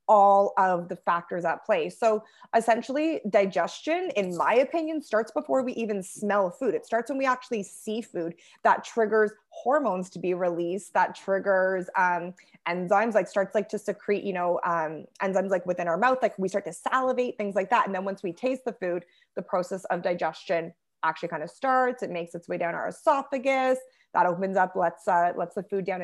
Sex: female